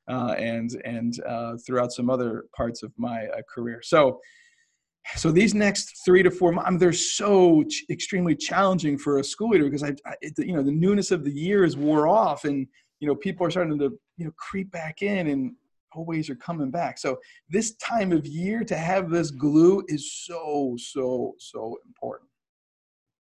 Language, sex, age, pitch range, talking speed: English, male, 40-59, 135-185 Hz, 195 wpm